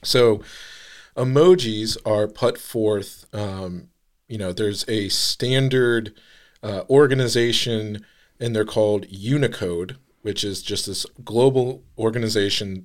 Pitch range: 100-120 Hz